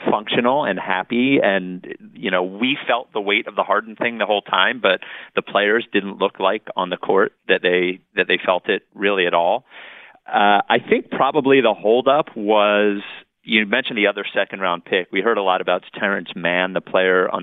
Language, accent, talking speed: English, American, 205 wpm